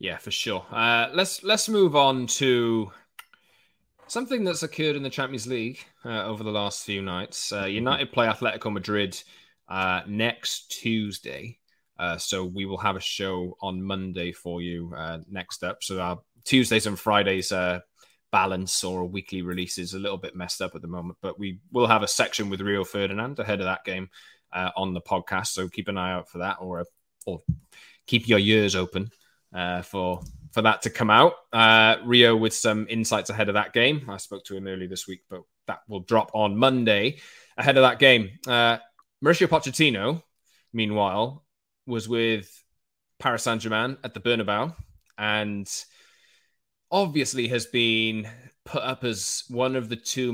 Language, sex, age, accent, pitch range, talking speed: English, male, 20-39, British, 95-120 Hz, 180 wpm